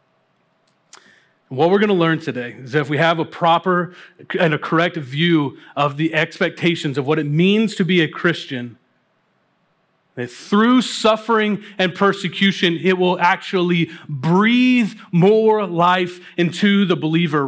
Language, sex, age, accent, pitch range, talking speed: English, male, 30-49, American, 155-195 Hz, 145 wpm